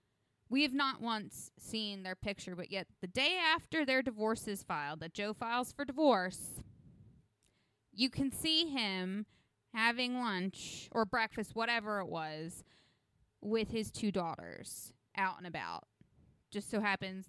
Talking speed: 145 wpm